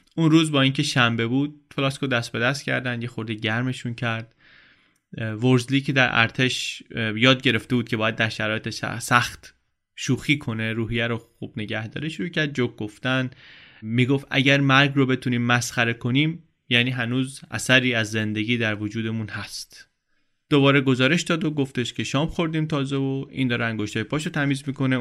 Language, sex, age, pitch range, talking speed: Persian, male, 20-39, 115-145 Hz, 165 wpm